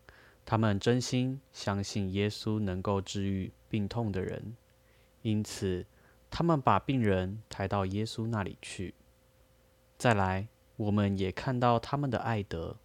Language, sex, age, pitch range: Chinese, male, 20-39, 95-115 Hz